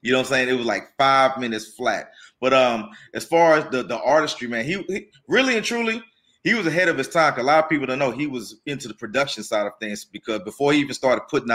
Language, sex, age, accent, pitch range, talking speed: English, male, 30-49, American, 105-135 Hz, 265 wpm